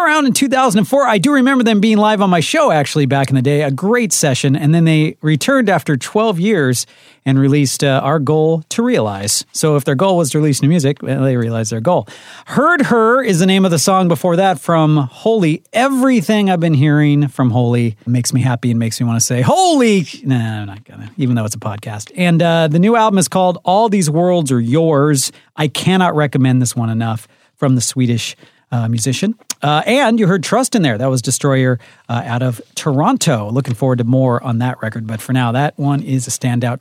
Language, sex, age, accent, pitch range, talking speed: English, male, 40-59, American, 125-185 Hz, 220 wpm